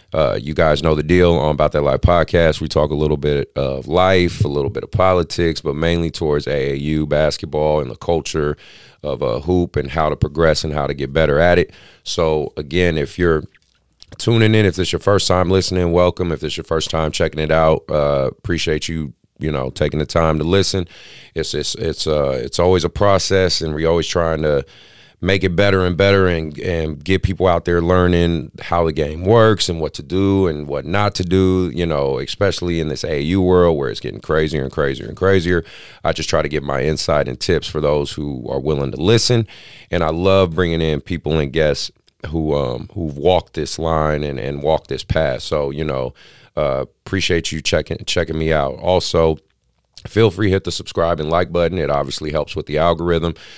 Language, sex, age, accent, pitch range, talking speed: English, male, 30-49, American, 75-90 Hz, 210 wpm